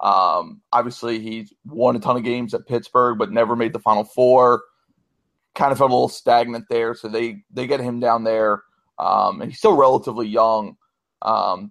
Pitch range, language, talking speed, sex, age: 110-125 Hz, English, 185 wpm, male, 30-49